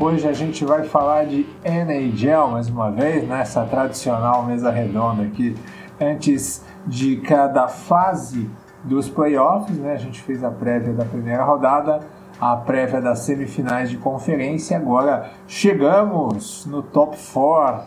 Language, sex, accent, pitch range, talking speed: English, male, Brazilian, 135-170 Hz, 140 wpm